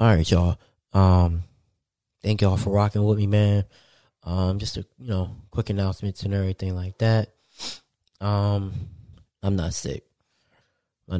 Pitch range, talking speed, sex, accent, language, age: 95-110 Hz, 140 wpm, male, American, English, 20-39